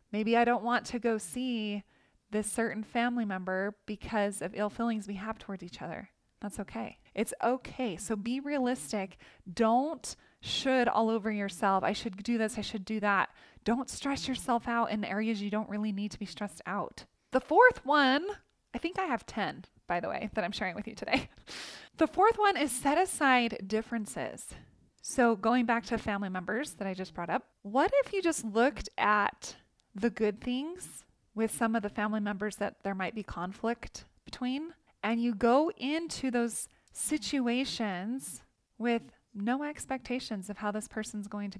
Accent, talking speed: American, 180 wpm